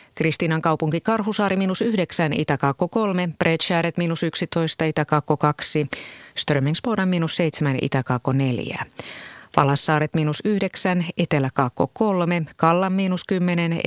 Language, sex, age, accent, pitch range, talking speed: Finnish, female, 30-49, native, 145-185 Hz, 75 wpm